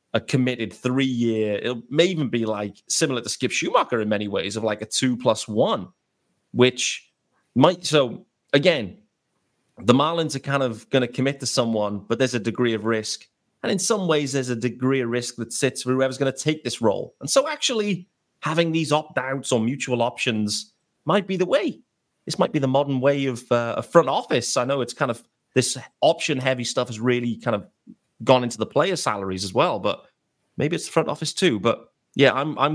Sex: male